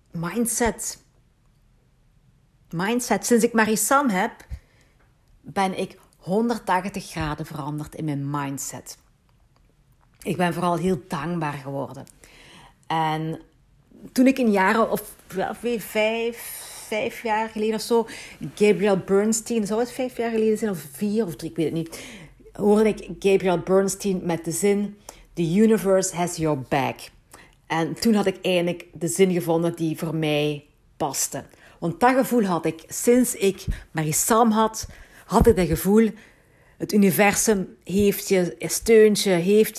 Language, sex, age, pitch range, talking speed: Dutch, female, 50-69, 160-215 Hz, 140 wpm